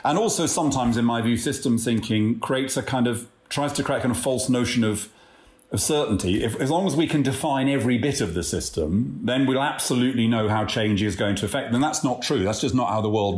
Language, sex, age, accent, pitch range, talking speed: English, male, 40-59, British, 105-140 Hz, 250 wpm